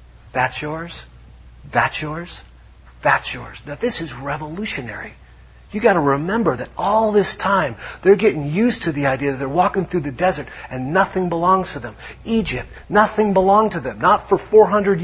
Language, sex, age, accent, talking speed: English, male, 40-59, American, 170 wpm